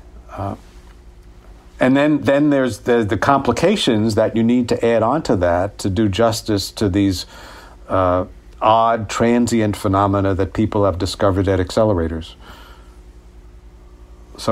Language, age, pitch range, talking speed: English, 50-69, 90-115 Hz, 130 wpm